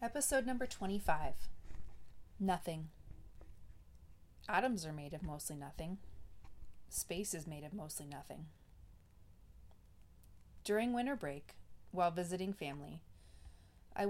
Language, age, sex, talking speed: English, 30-49, female, 100 wpm